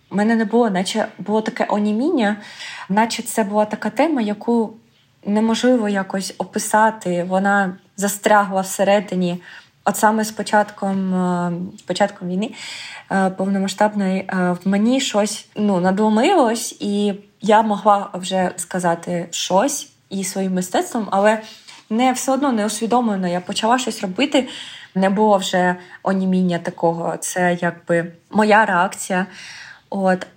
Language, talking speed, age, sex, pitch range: Ukrainian, 120 wpm, 20-39, female, 185-215 Hz